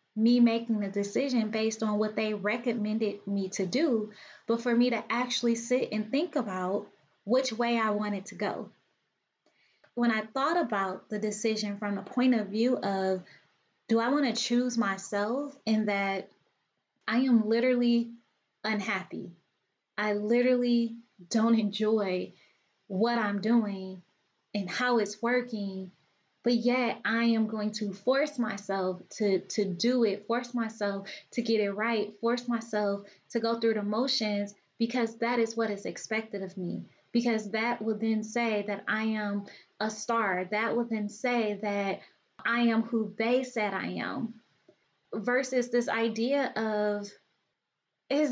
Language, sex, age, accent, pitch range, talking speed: English, female, 20-39, American, 205-245 Hz, 150 wpm